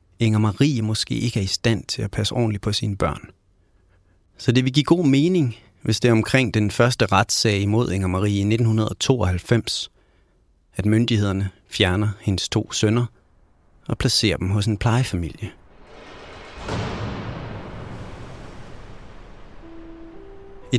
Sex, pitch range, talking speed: male, 100-125 Hz, 130 wpm